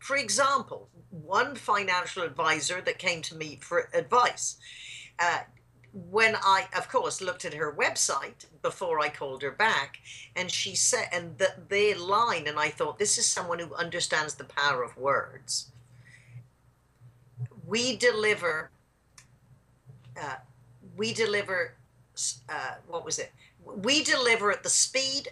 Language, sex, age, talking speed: English, female, 50-69, 135 wpm